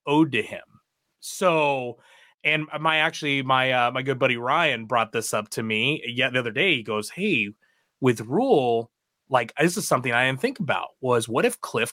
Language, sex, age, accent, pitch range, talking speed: English, male, 30-49, American, 115-155 Hz, 200 wpm